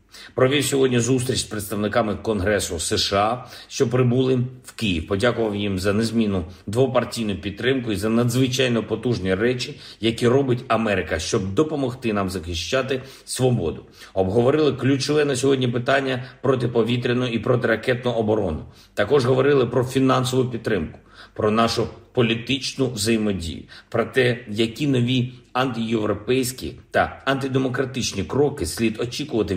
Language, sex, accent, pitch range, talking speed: Ukrainian, male, native, 105-130 Hz, 120 wpm